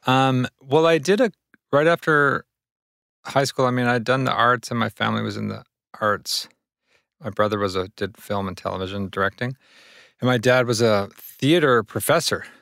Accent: American